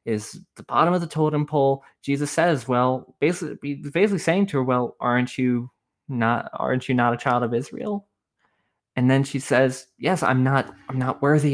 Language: English